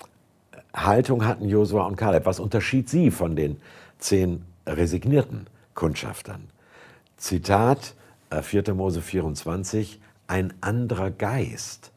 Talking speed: 100 wpm